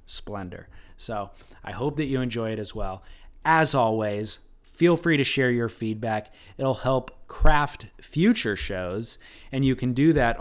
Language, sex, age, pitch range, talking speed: English, male, 20-39, 105-135 Hz, 160 wpm